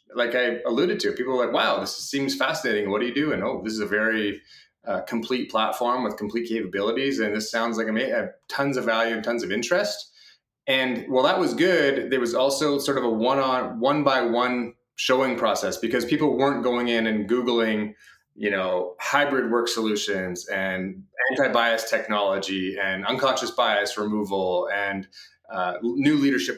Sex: male